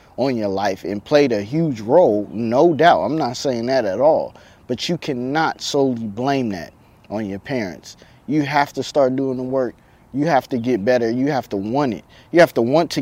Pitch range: 120-150 Hz